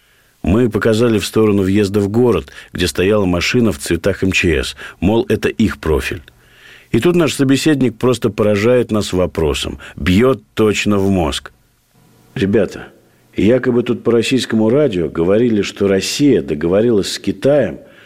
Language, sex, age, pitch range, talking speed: Russian, male, 50-69, 90-115 Hz, 135 wpm